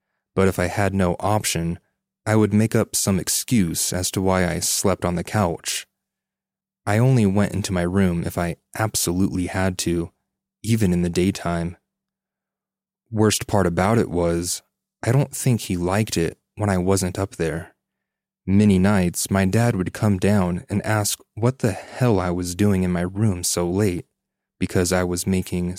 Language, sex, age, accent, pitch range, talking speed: English, male, 30-49, American, 90-110 Hz, 175 wpm